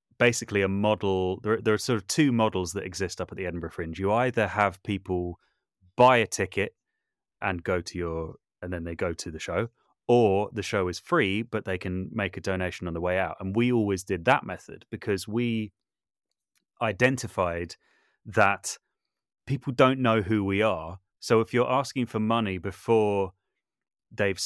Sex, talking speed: male, 180 wpm